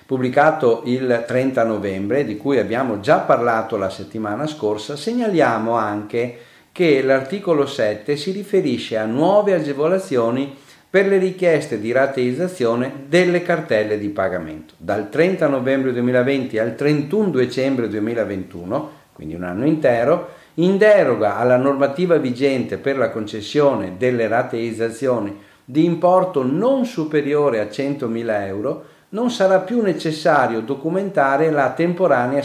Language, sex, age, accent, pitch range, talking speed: Italian, male, 50-69, native, 110-160 Hz, 125 wpm